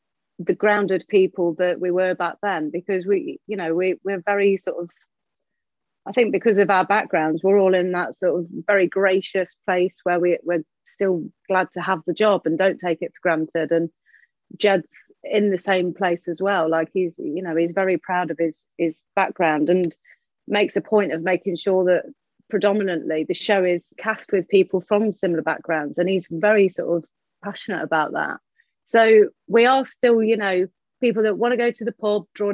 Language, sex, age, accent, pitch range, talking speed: English, female, 30-49, British, 180-240 Hz, 195 wpm